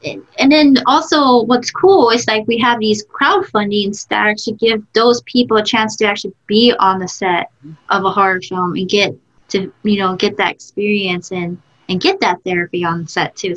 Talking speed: 200 wpm